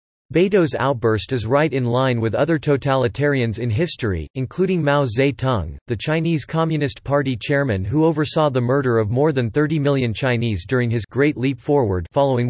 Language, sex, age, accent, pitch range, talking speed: English, male, 40-59, American, 115-150 Hz, 170 wpm